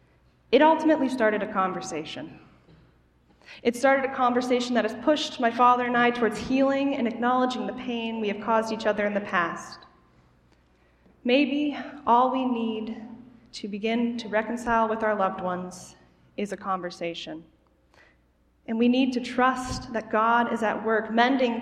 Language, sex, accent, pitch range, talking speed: English, female, American, 200-240 Hz, 155 wpm